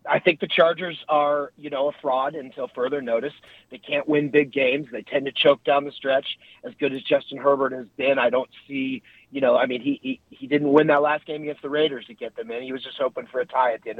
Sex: male